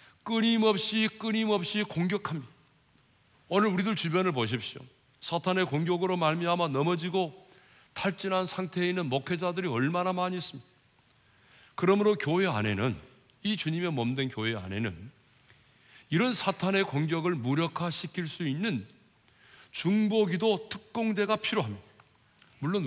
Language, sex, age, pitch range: Korean, male, 40-59, 120-185 Hz